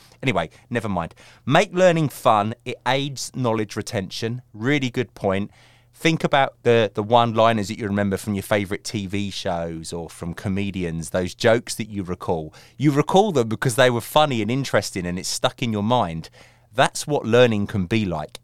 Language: English